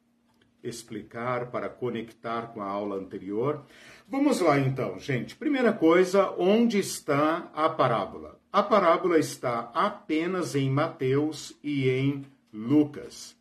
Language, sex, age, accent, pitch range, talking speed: Portuguese, male, 50-69, Brazilian, 120-155 Hz, 115 wpm